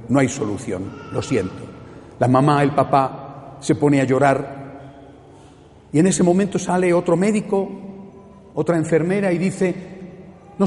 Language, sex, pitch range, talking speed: Spanish, male, 135-190 Hz, 140 wpm